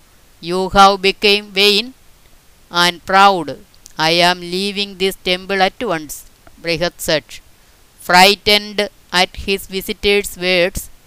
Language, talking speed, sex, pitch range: Malayalam, 110 wpm, female, 165-205 Hz